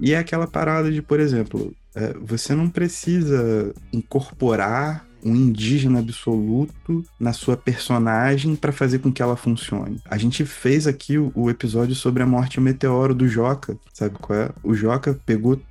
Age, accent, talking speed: 20-39, Brazilian, 170 wpm